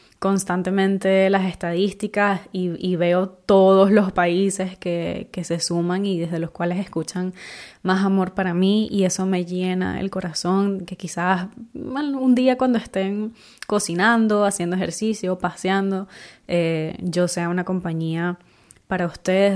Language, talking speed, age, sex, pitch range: Spanish, 140 wpm, 20-39, female, 175-195 Hz